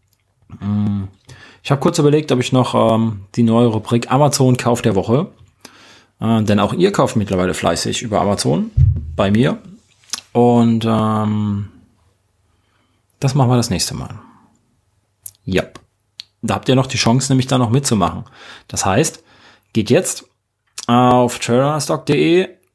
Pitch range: 105-125 Hz